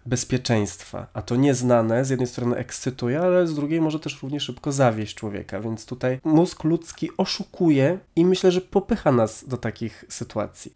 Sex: male